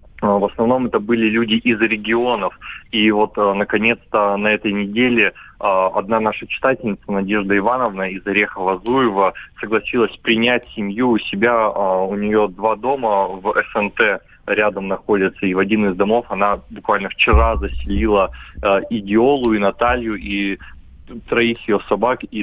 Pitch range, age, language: 100-110 Hz, 20-39, Russian